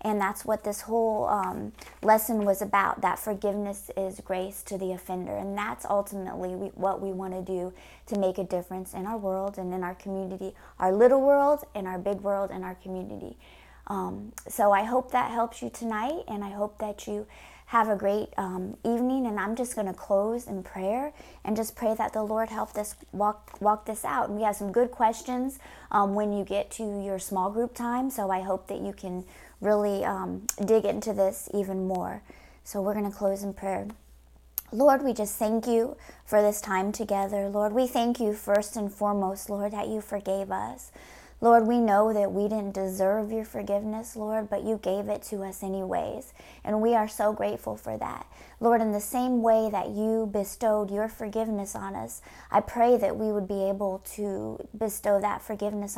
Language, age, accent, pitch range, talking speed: English, 30-49, American, 195-225 Hz, 200 wpm